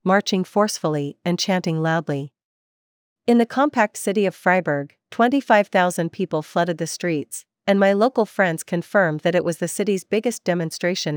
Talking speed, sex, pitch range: 150 wpm, female, 160-200 Hz